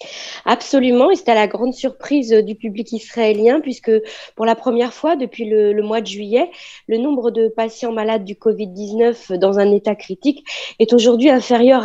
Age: 40-59